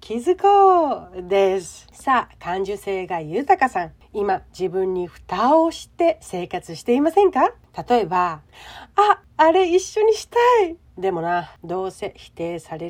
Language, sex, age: Japanese, female, 40-59